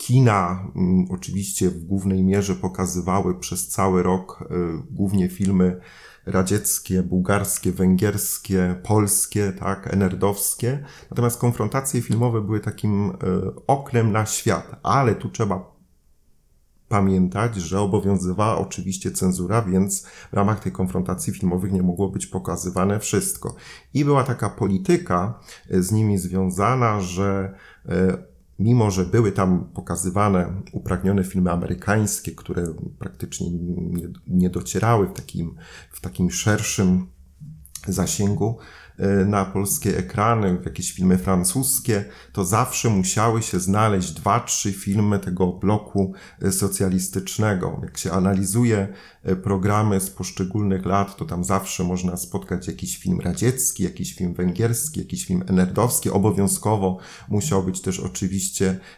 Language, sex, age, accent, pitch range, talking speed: Polish, male, 30-49, native, 95-105 Hz, 120 wpm